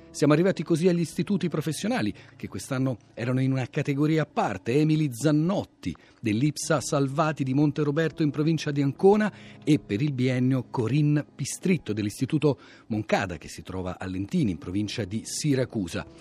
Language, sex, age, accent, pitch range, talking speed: Italian, male, 40-59, native, 110-160 Hz, 155 wpm